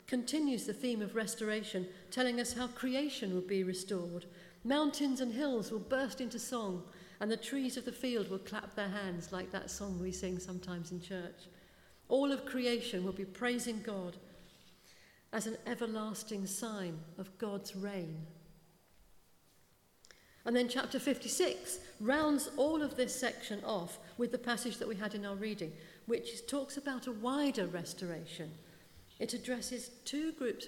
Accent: British